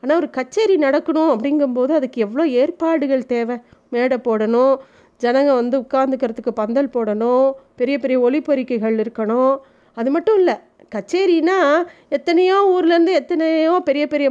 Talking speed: 120 wpm